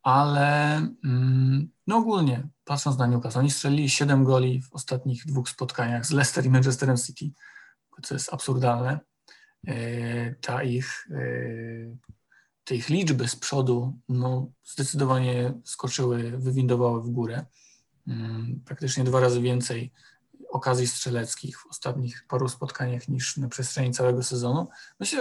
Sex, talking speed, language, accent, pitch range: male, 120 wpm, Polish, native, 125-140 Hz